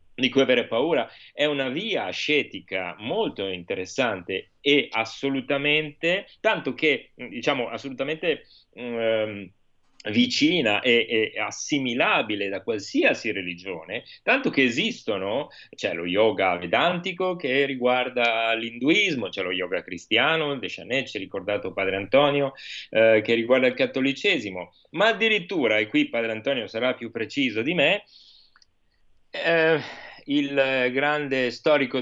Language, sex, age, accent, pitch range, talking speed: Italian, male, 30-49, native, 110-150 Hz, 125 wpm